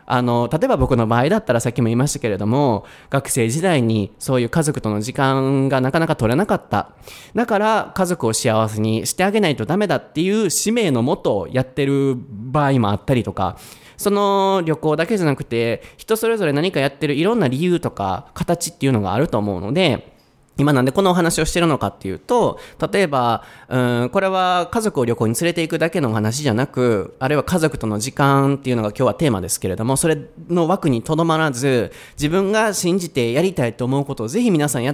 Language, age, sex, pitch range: Japanese, 20-39, male, 120-170 Hz